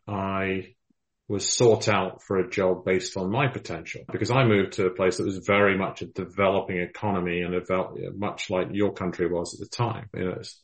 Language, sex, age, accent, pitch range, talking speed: English, male, 40-59, British, 95-115 Hz, 195 wpm